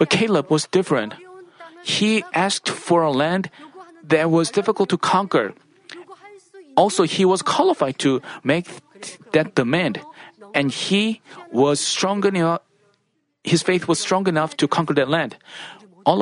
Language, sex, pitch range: Korean, male, 170-210 Hz